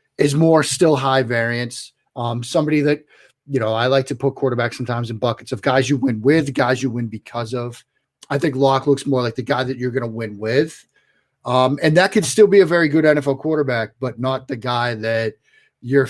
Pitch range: 120-145 Hz